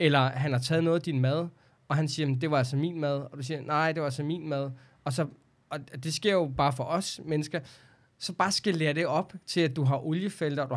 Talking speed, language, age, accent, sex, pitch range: 265 wpm, Danish, 20-39, native, male, 130-160 Hz